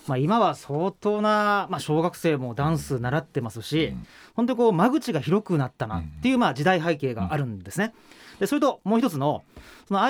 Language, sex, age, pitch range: Japanese, male, 30-49, 135-220 Hz